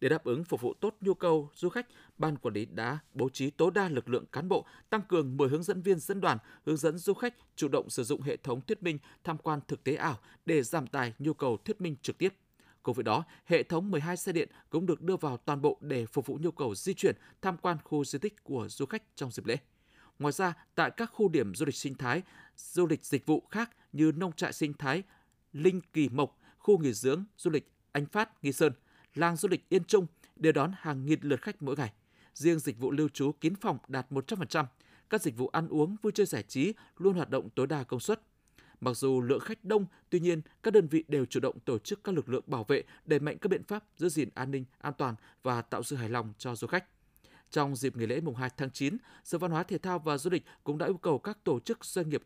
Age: 20-39